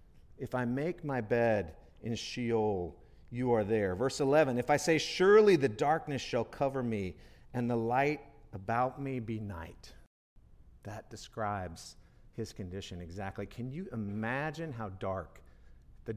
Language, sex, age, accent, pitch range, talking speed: English, male, 50-69, American, 100-135 Hz, 145 wpm